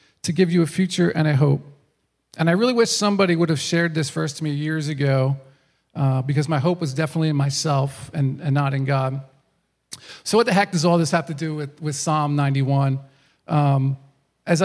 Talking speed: 210 wpm